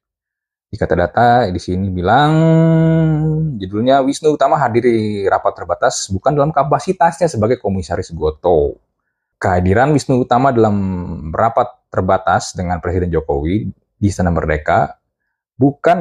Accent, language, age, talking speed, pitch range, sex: native, Indonesian, 20-39, 120 wpm, 90-140 Hz, male